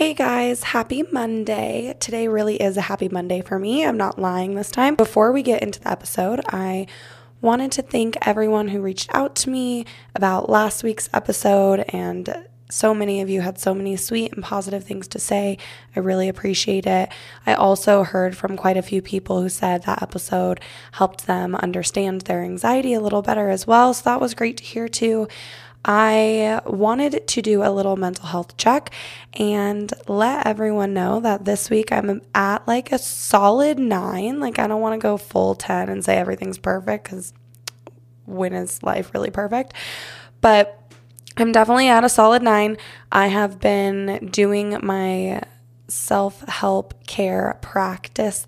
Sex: female